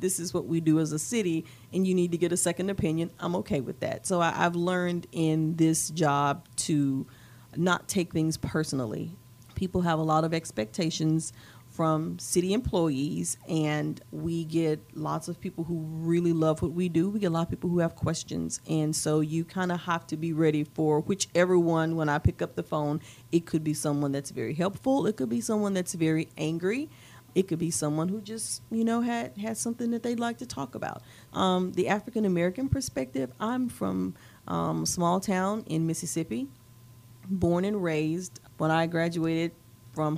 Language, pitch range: English, 150-180 Hz